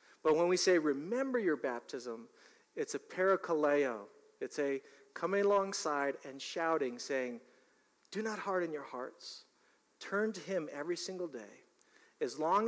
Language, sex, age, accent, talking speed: English, male, 40-59, American, 140 wpm